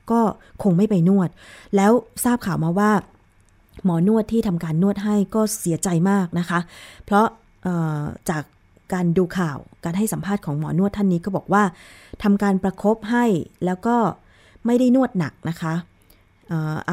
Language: Thai